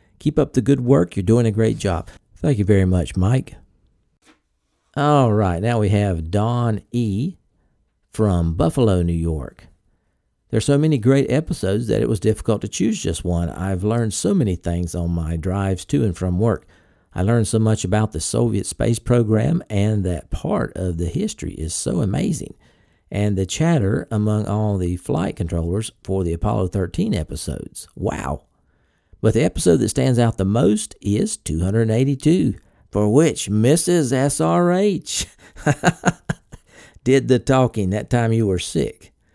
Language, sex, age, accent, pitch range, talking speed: English, male, 50-69, American, 90-125 Hz, 160 wpm